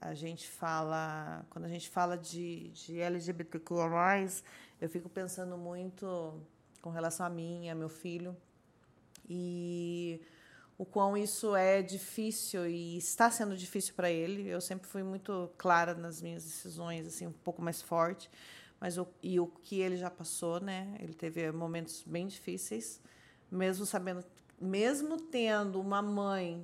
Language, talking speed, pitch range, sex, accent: Portuguese, 150 wpm, 175-215 Hz, female, Brazilian